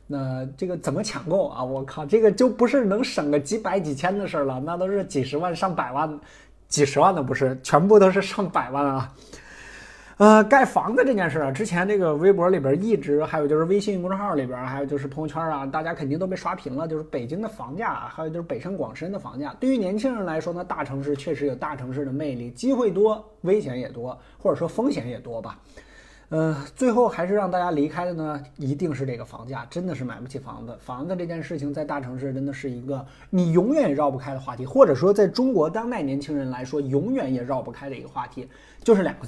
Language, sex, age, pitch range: Chinese, male, 20-39, 135-180 Hz